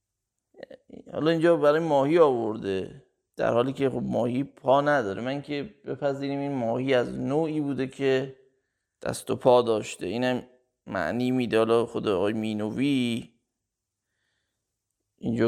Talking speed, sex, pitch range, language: 125 wpm, male, 110-130 Hz, Persian